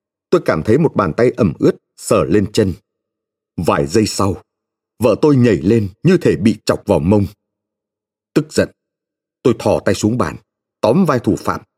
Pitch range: 105-135 Hz